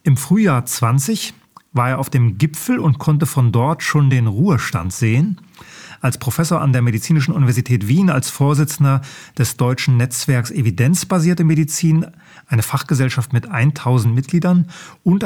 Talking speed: 140 wpm